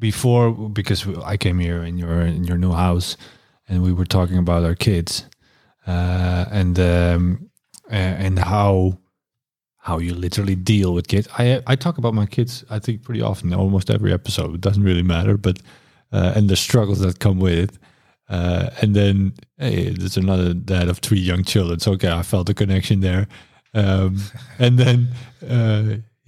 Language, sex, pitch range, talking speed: English, male, 90-115 Hz, 175 wpm